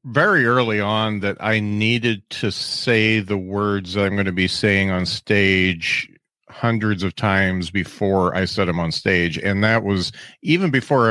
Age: 40-59